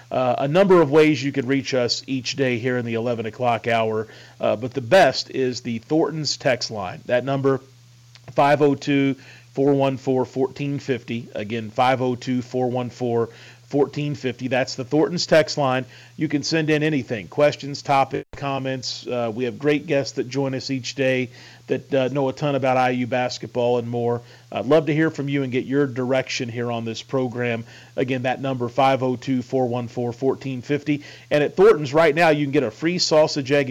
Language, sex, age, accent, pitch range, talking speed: English, male, 40-59, American, 125-150 Hz, 165 wpm